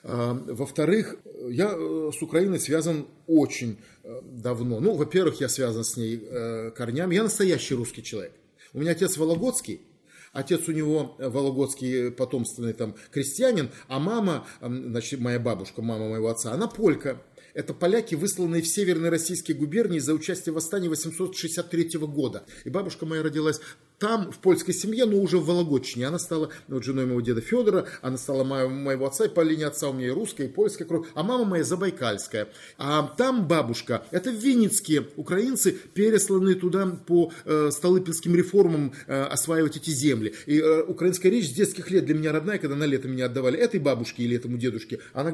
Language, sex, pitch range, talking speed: Russian, male, 130-175 Hz, 170 wpm